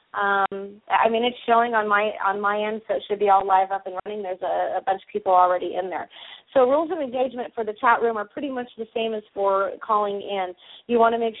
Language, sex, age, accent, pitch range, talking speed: English, female, 30-49, American, 200-245 Hz, 260 wpm